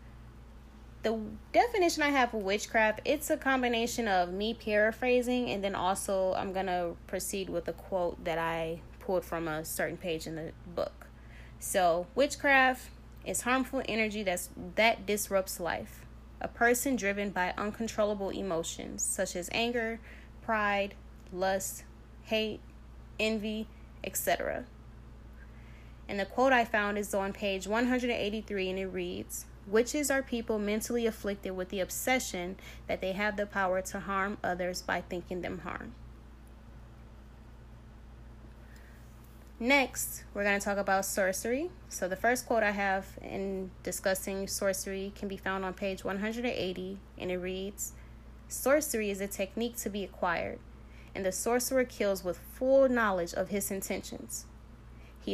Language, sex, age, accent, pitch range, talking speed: English, female, 10-29, American, 185-230 Hz, 140 wpm